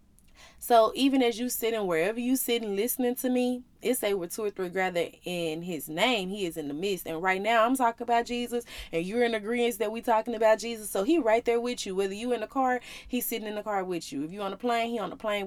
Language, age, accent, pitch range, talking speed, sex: English, 20-39, American, 180-235 Hz, 270 wpm, female